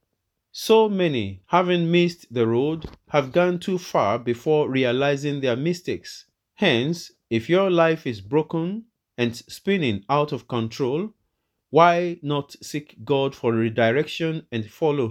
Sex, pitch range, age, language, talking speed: male, 115-165 Hz, 40-59, English, 130 wpm